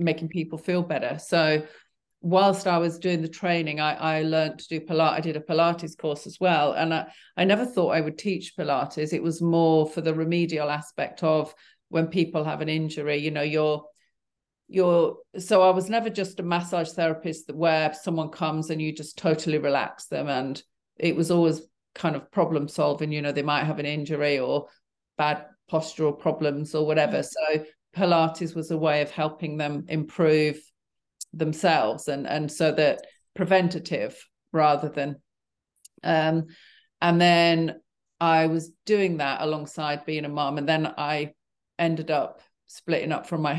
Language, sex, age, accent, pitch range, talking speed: English, female, 40-59, British, 150-170 Hz, 170 wpm